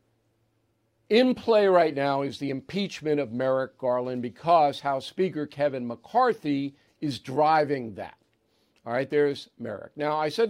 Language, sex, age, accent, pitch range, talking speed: English, male, 50-69, American, 125-180 Hz, 145 wpm